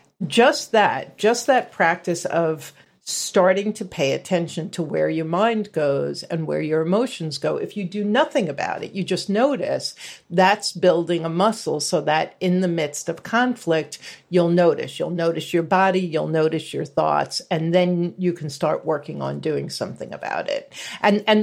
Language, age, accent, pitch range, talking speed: English, 50-69, American, 155-195 Hz, 175 wpm